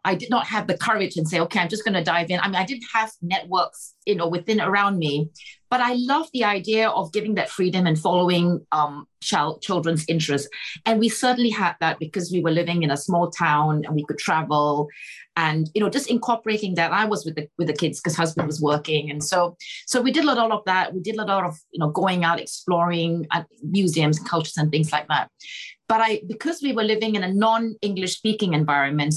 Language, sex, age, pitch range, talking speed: English, female, 30-49, 160-215 Hz, 230 wpm